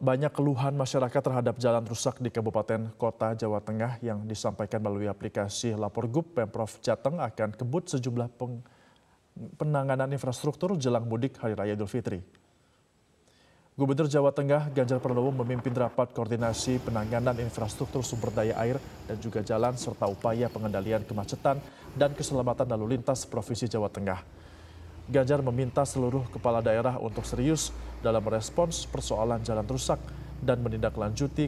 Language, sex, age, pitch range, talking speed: Indonesian, male, 30-49, 110-135 Hz, 135 wpm